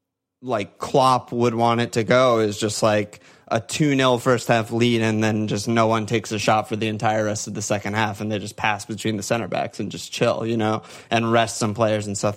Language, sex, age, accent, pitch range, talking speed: English, male, 20-39, American, 110-125 Hz, 245 wpm